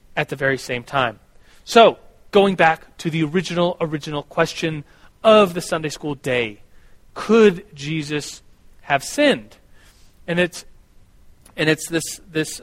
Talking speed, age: 135 wpm, 30-49